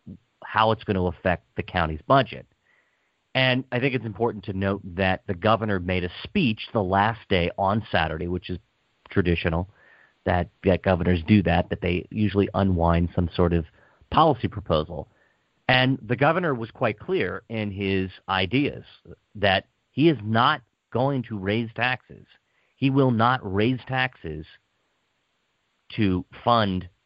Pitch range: 90-120 Hz